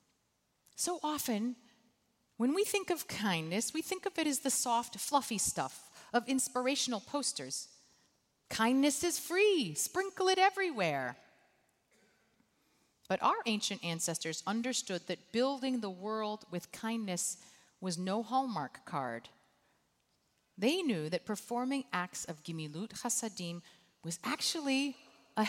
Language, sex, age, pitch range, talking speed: English, female, 40-59, 175-250 Hz, 120 wpm